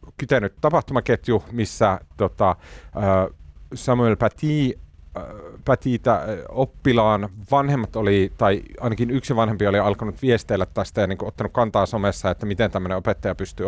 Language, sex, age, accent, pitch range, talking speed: Finnish, male, 30-49, native, 85-110 Hz, 125 wpm